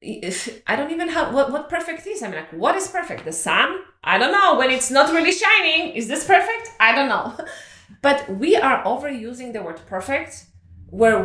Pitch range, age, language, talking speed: 205-295 Hz, 30-49, English, 205 wpm